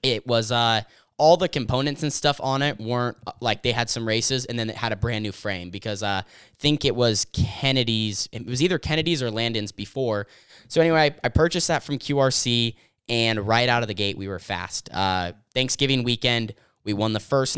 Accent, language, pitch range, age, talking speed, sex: American, English, 105-120 Hz, 10-29, 210 wpm, male